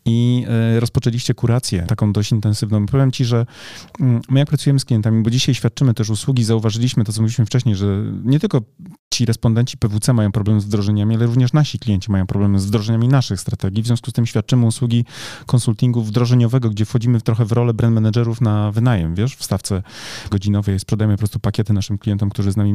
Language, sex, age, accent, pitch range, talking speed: Polish, male, 30-49, native, 105-130 Hz, 195 wpm